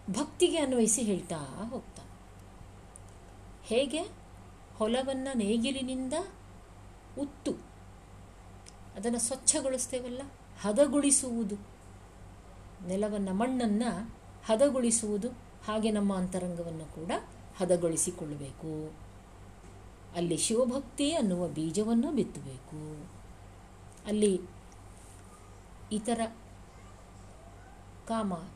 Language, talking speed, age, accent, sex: Kannada, 55 wpm, 50-69, native, female